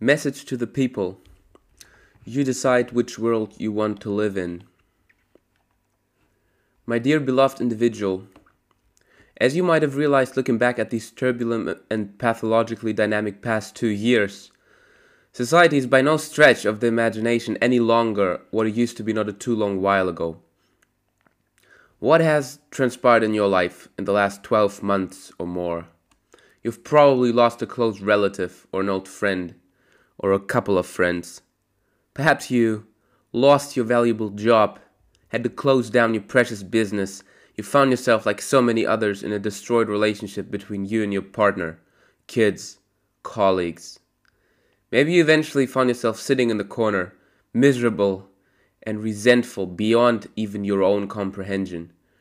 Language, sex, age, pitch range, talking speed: English, male, 20-39, 100-120 Hz, 150 wpm